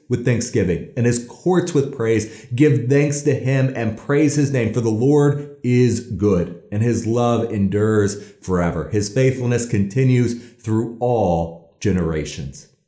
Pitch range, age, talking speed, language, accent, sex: 95-130 Hz, 30-49, 145 wpm, English, American, male